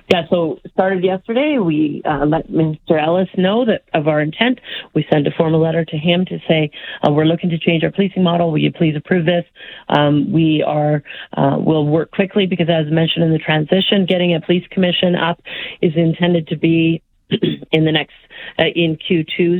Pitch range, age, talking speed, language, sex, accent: 155-190 Hz, 40-59, 200 wpm, English, female, American